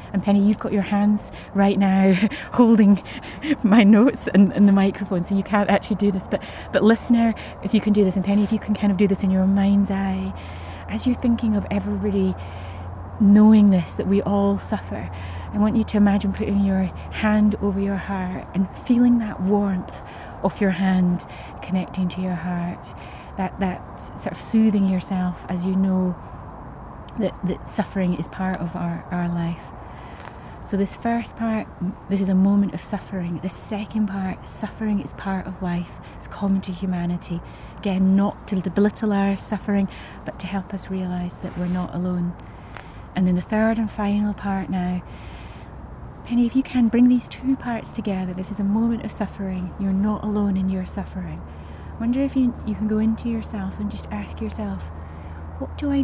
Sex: female